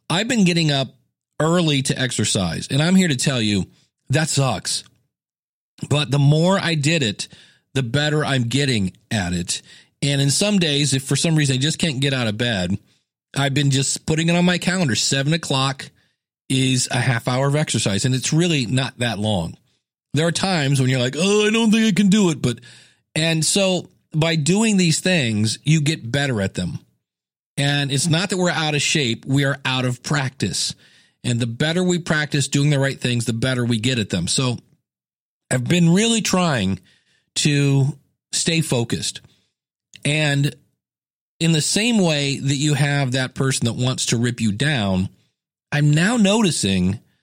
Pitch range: 125-165 Hz